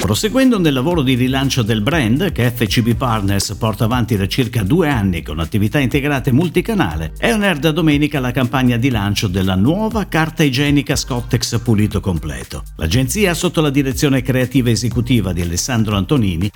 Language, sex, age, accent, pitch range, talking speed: Italian, male, 50-69, native, 110-155 Hz, 160 wpm